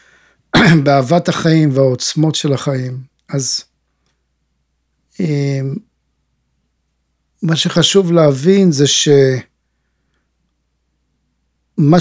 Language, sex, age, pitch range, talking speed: Hebrew, male, 50-69, 140-175 Hz, 55 wpm